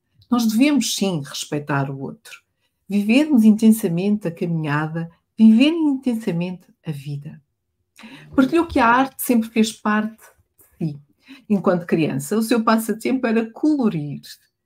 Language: Portuguese